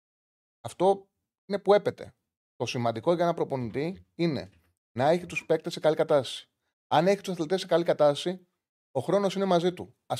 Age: 30-49